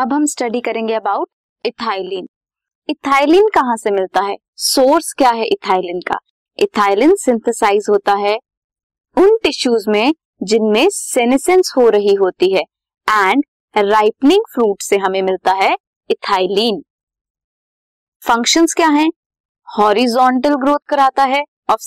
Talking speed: 75 wpm